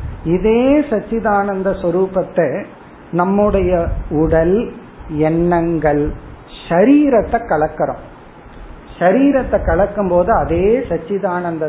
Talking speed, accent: 65 wpm, native